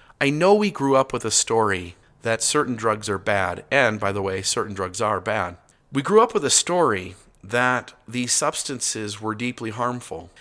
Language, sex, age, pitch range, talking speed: English, male, 40-59, 110-140 Hz, 190 wpm